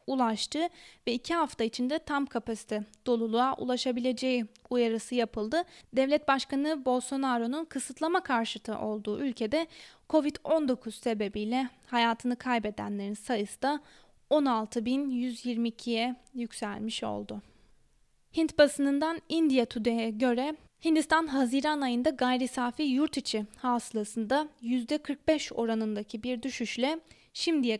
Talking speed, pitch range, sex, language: 95 wpm, 230-280 Hz, female, Turkish